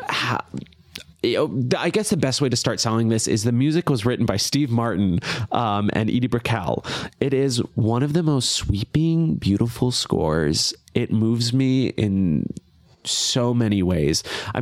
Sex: male